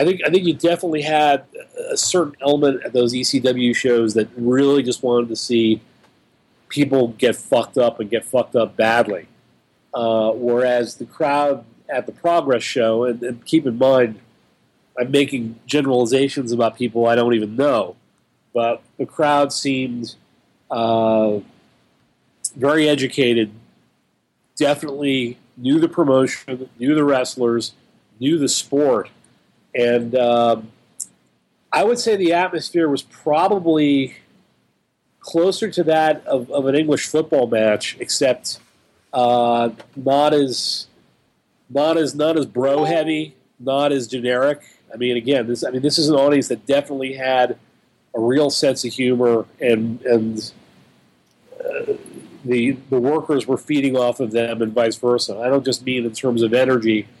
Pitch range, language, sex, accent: 120-145 Hz, English, male, American